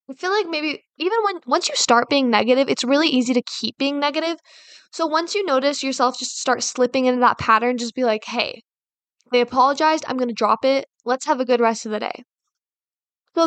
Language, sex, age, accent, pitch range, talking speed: English, female, 10-29, American, 235-290 Hz, 215 wpm